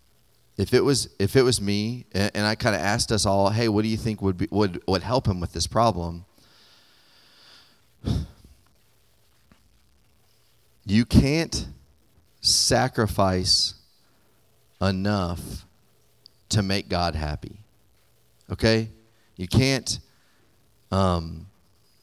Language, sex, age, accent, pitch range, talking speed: English, male, 30-49, American, 95-120 Hz, 110 wpm